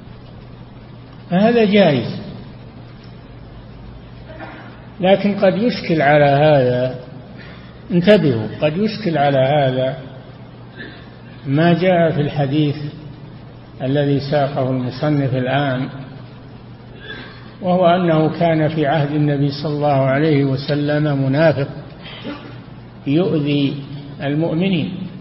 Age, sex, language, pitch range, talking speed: 60-79, male, Arabic, 140-175 Hz, 80 wpm